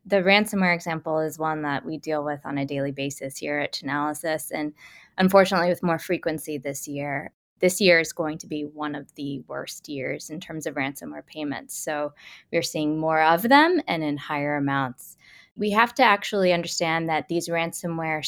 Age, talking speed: 20-39, 185 wpm